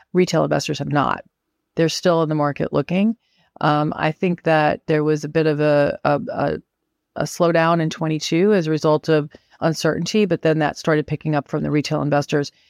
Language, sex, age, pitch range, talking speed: English, female, 40-59, 155-170 Hz, 195 wpm